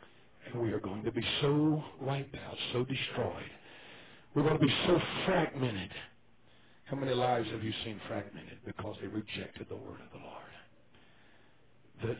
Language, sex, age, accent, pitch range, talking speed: English, male, 60-79, American, 110-145 Hz, 160 wpm